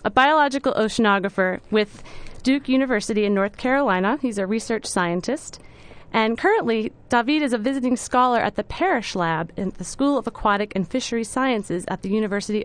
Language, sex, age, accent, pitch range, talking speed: English, female, 30-49, American, 195-255 Hz, 165 wpm